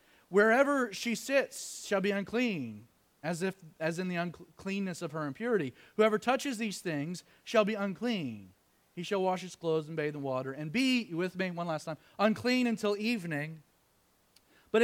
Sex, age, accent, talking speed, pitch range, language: male, 30-49, American, 170 wpm, 155-220 Hz, English